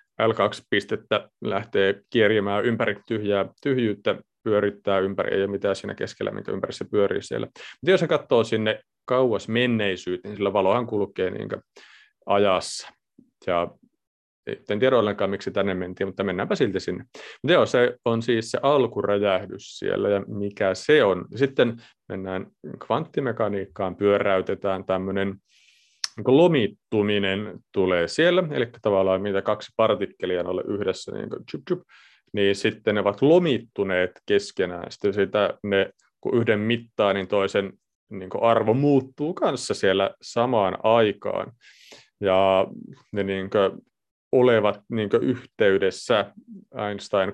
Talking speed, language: 125 wpm, Finnish